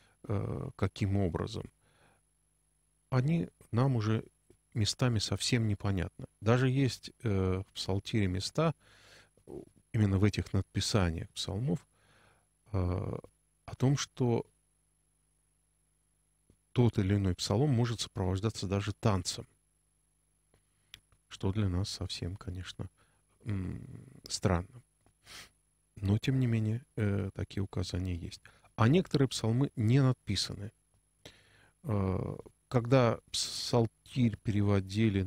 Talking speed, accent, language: 85 wpm, native, Russian